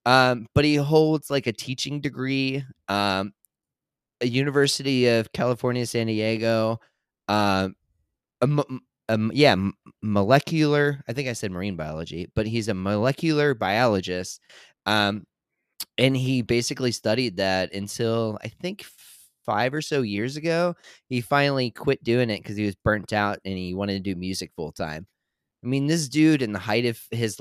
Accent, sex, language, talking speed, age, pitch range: American, male, English, 155 wpm, 30-49, 95-125 Hz